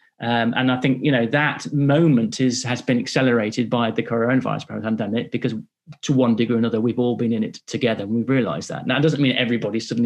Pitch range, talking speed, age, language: 110-125 Hz, 225 wpm, 30-49, English